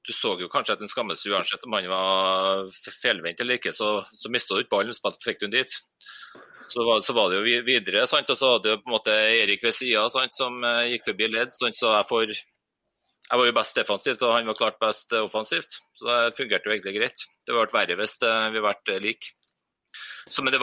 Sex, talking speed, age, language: male, 235 wpm, 30-49, English